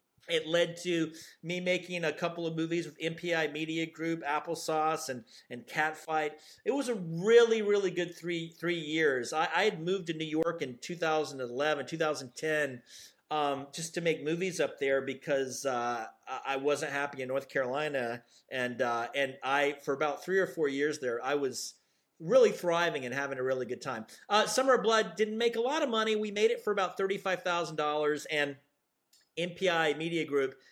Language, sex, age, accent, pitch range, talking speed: English, male, 40-59, American, 150-200 Hz, 180 wpm